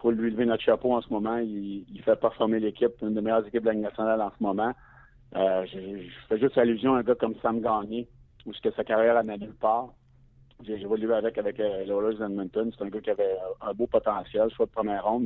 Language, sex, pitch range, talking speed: French, male, 105-120 Hz, 250 wpm